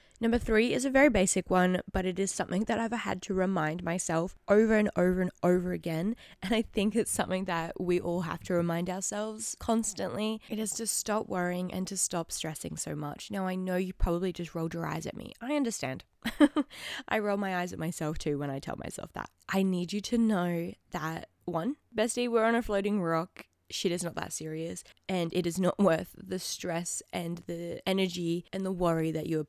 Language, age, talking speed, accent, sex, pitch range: English, 20-39, 215 wpm, Australian, female, 165-200 Hz